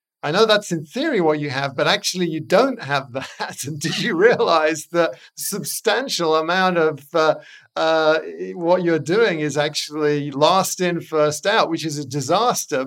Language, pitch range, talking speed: English, 140-170 Hz, 170 wpm